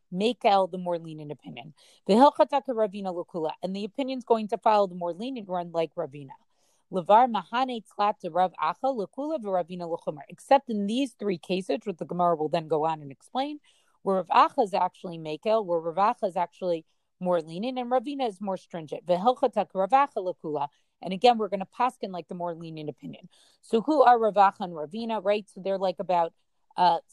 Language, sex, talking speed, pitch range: English, female, 180 wpm, 175-220 Hz